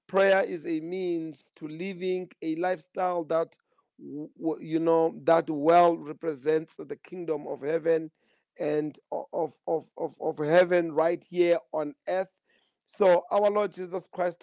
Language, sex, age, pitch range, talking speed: English, male, 40-59, 160-180 Hz, 135 wpm